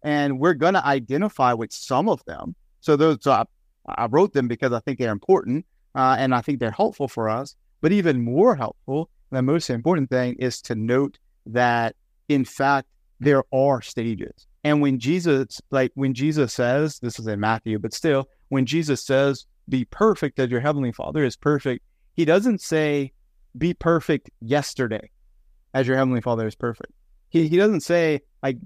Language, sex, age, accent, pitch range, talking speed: English, male, 30-49, American, 120-150 Hz, 180 wpm